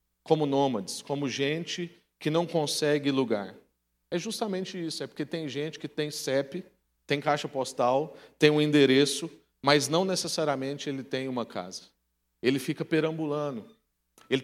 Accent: Brazilian